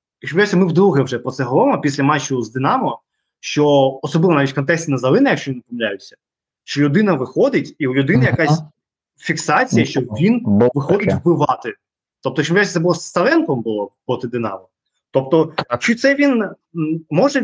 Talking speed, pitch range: 160 wpm, 130-170 Hz